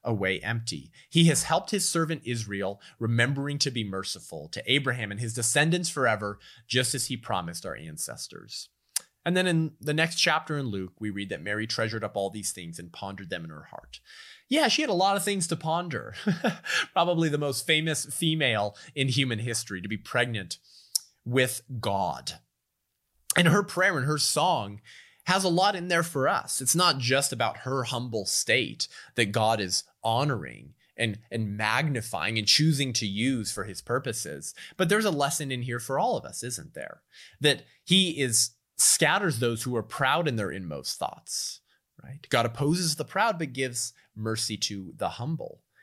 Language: English